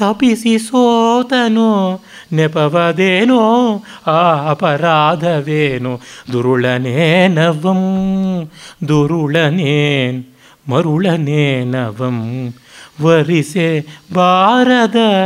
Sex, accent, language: male, native, Kannada